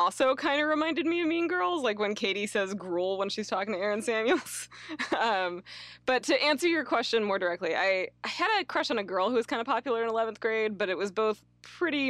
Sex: female